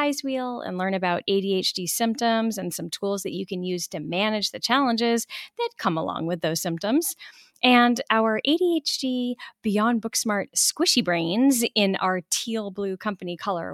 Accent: American